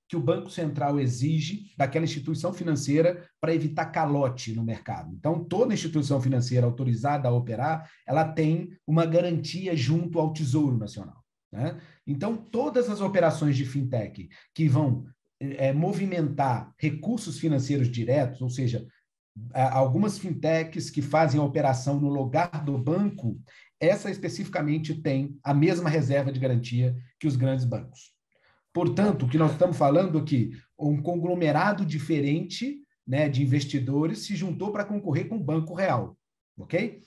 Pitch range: 135-170 Hz